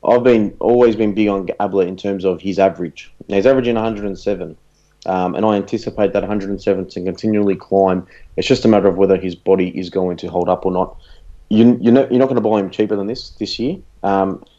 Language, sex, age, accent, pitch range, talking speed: English, male, 30-49, Australian, 90-100 Hz, 220 wpm